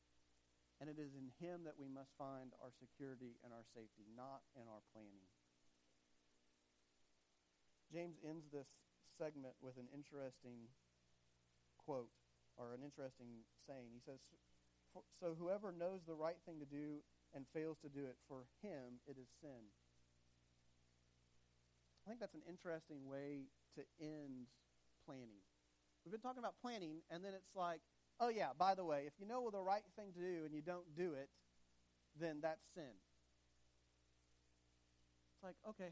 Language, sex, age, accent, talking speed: English, male, 40-59, American, 155 wpm